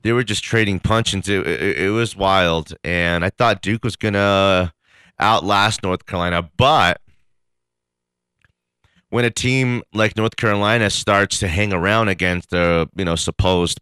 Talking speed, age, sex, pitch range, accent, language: 150 wpm, 30-49, male, 80-105 Hz, American, English